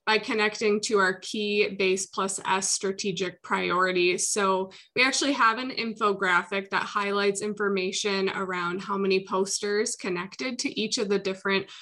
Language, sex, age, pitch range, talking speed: English, female, 20-39, 190-225 Hz, 145 wpm